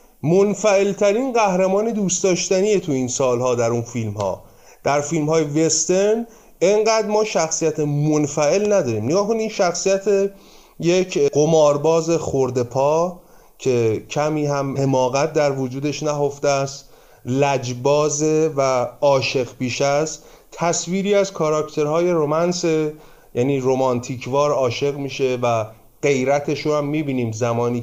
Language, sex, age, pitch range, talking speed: Persian, male, 30-49, 125-170 Hz, 120 wpm